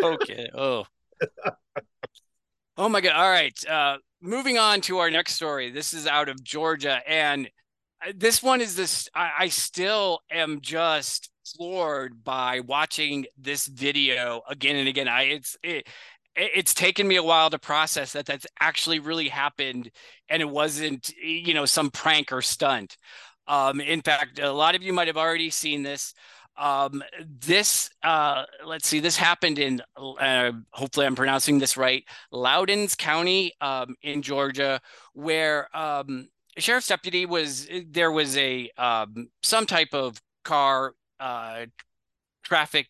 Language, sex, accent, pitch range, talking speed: English, male, American, 140-170 Hz, 150 wpm